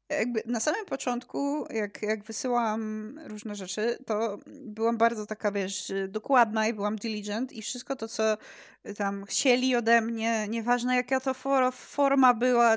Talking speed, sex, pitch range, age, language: 140 wpm, female, 220-285 Hz, 20-39, Polish